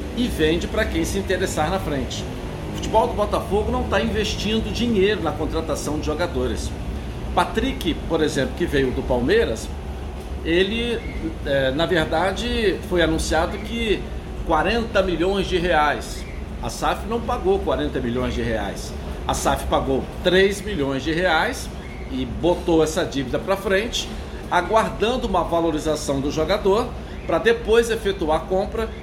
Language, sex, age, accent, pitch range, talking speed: Portuguese, male, 60-79, Brazilian, 140-210 Hz, 140 wpm